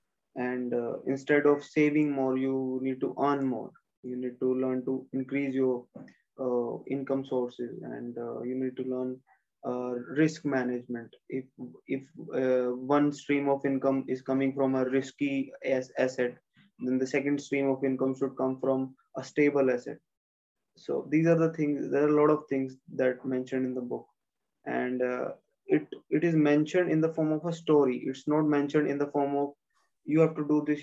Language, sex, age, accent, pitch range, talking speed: English, male, 20-39, Indian, 130-150 Hz, 190 wpm